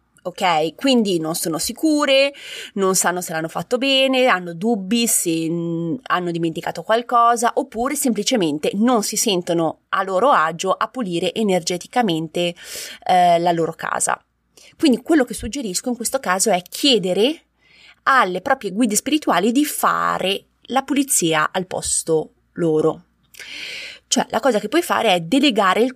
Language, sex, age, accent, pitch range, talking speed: Italian, female, 20-39, native, 170-250 Hz, 140 wpm